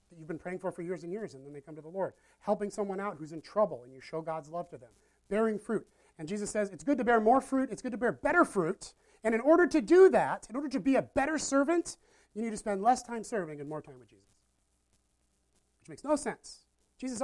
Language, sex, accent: English, male, American